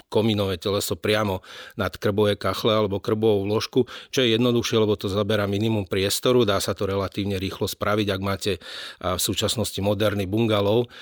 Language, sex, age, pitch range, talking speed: Slovak, male, 40-59, 95-105 Hz, 160 wpm